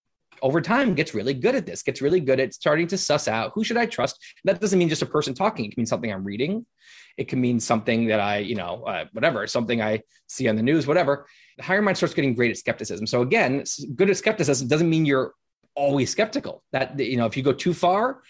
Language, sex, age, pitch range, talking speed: English, male, 20-39, 125-170 Hz, 245 wpm